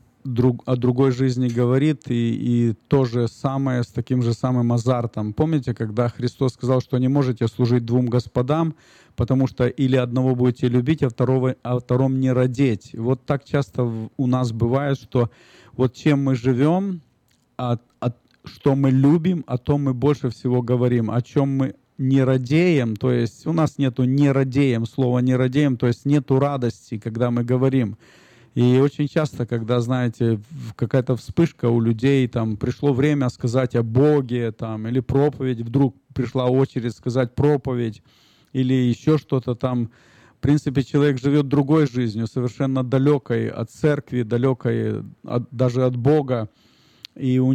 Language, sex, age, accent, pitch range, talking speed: Russian, male, 40-59, native, 120-140 Hz, 160 wpm